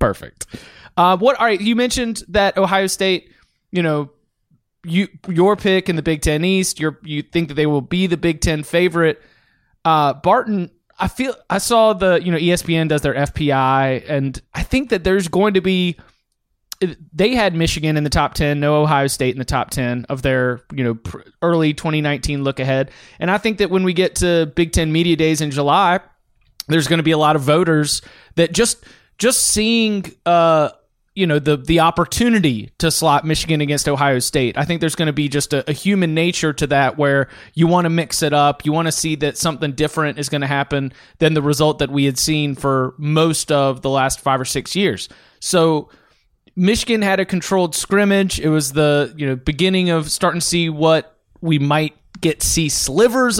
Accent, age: American, 20-39